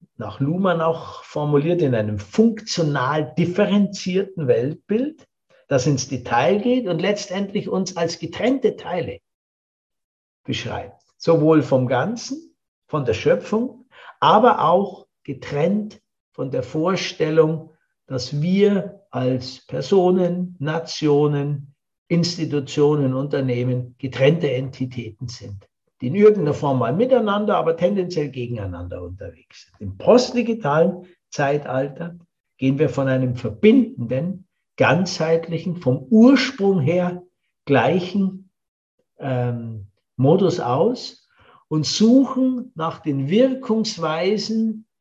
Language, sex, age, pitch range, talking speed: German, male, 60-79, 135-195 Hz, 100 wpm